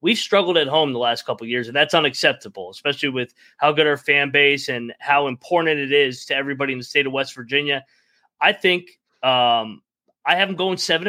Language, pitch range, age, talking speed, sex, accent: English, 135-160 Hz, 20-39, 215 wpm, male, American